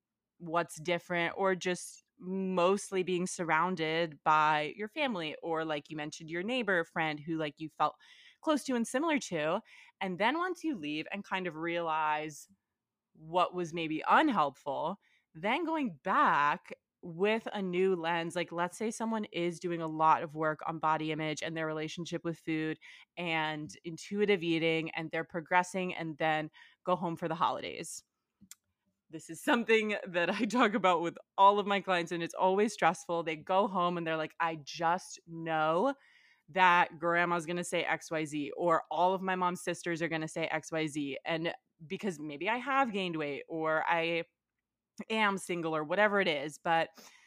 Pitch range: 160-195 Hz